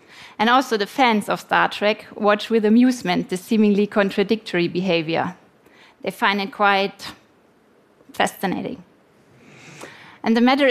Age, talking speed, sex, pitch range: 20-39, 125 wpm, female, 200-250 Hz